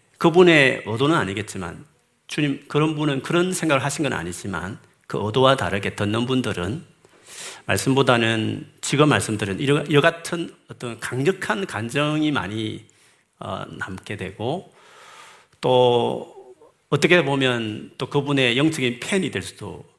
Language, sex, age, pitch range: Korean, male, 40-59, 110-155 Hz